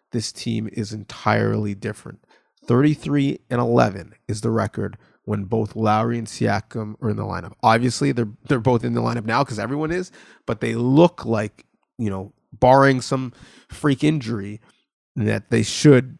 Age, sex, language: 30-49, male, English